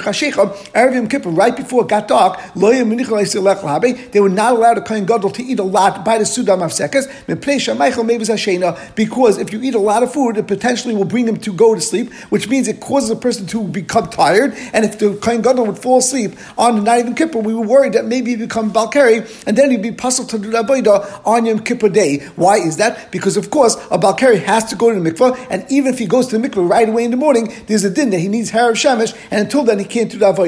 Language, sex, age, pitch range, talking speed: English, male, 50-69, 205-245 Hz, 240 wpm